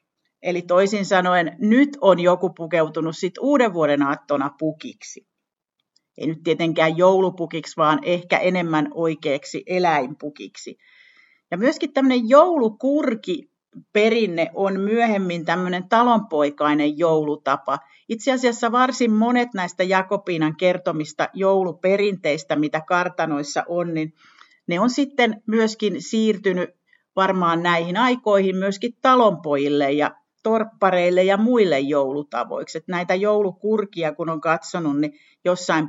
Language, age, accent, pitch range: Finnish, 50-69, native, 155-215 Hz